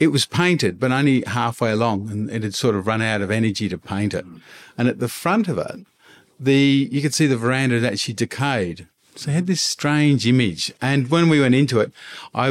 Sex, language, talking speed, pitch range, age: male, English, 225 wpm, 100-135 Hz, 50-69